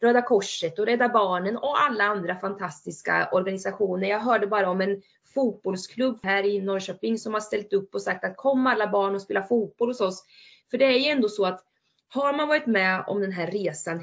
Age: 20-39